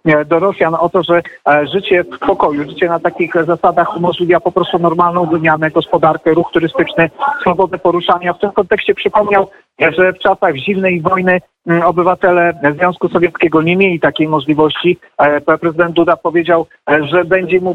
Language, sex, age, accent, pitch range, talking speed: Polish, male, 50-69, native, 165-185 Hz, 150 wpm